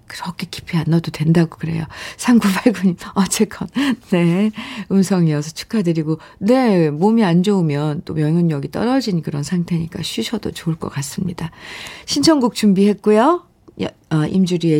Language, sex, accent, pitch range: Korean, female, native, 160-220 Hz